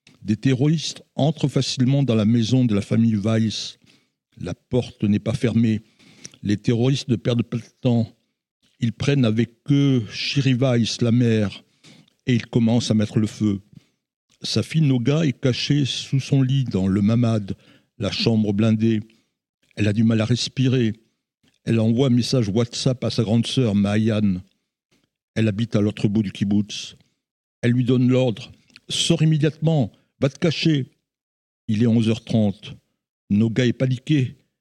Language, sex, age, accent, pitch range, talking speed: French, male, 60-79, French, 105-130 Hz, 160 wpm